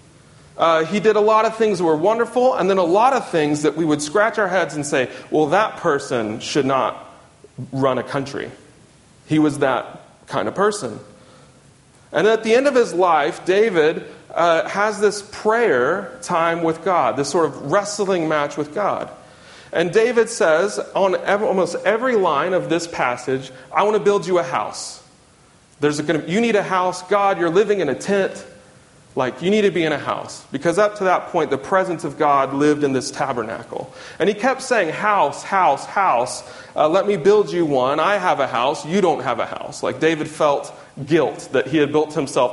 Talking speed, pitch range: 200 wpm, 145-200 Hz